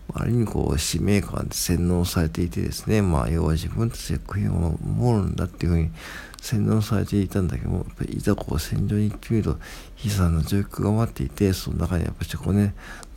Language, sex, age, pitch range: Japanese, male, 60-79, 80-100 Hz